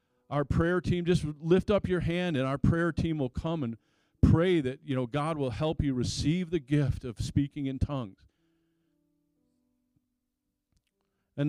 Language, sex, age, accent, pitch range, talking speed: English, male, 40-59, American, 130-165 Hz, 160 wpm